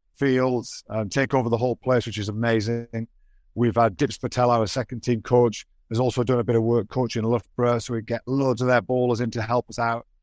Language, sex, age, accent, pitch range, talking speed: English, male, 50-69, British, 115-130 Hz, 235 wpm